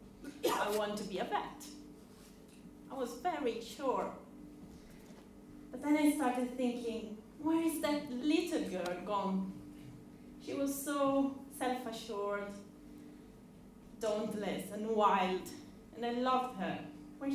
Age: 30-49